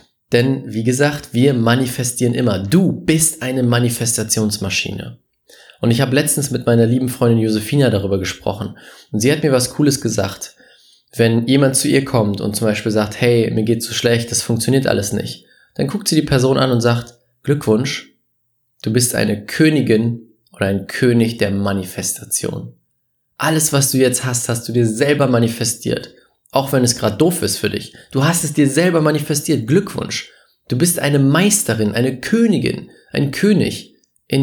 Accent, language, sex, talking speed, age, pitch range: German, German, male, 175 wpm, 20-39, 115-140 Hz